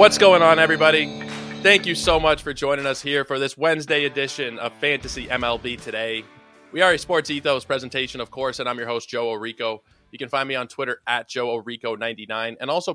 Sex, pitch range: male, 105-135 Hz